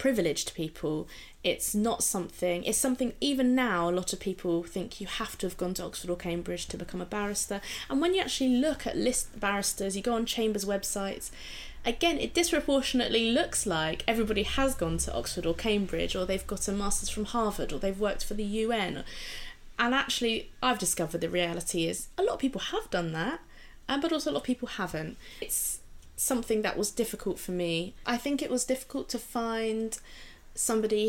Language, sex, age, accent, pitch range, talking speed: English, female, 20-39, British, 185-240 Hz, 195 wpm